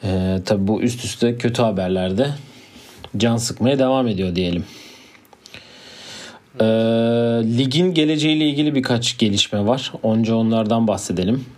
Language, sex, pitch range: Turkish, male, 100-120 Hz